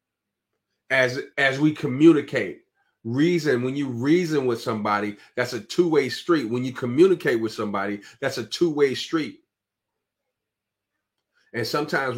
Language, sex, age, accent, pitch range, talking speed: English, male, 30-49, American, 110-130 Hz, 125 wpm